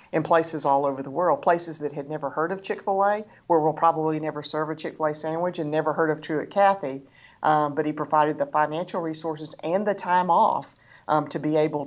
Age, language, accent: 50-69, English, American